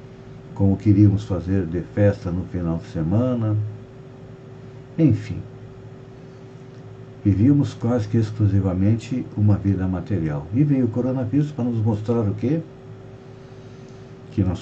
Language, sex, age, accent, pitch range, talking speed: Portuguese, male, 60-79, Brazilian, 105-130 Hz, 115 wpm